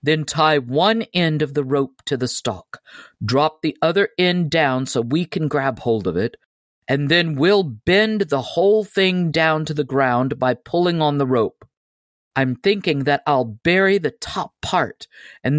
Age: 50-69